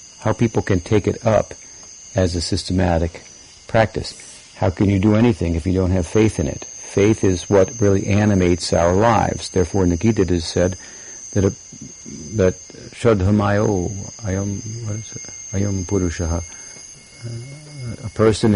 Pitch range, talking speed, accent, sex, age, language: 85-110 Hz, 150 wpm, American, male, 60-79, English